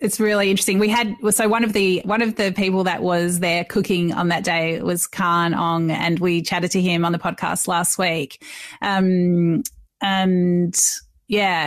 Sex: female